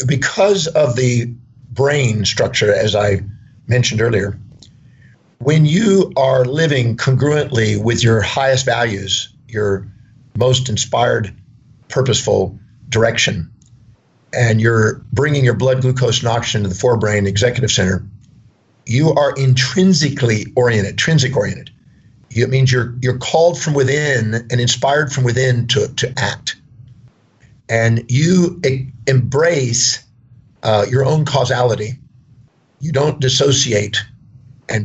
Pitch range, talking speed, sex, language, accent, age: 115-135 Hz, 115 wpm, male, English, American, 50-69